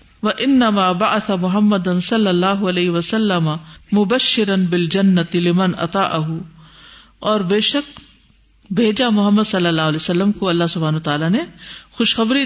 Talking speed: 125 wpm